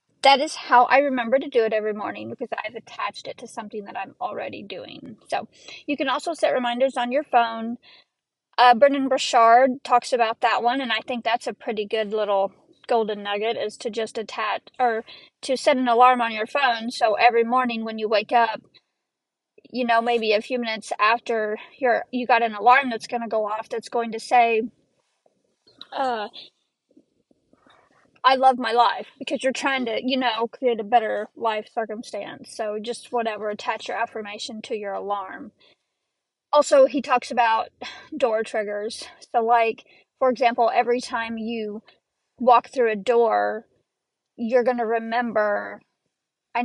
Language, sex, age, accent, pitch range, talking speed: English, female, 30-49, American, 225-255 Hz, 170 wpm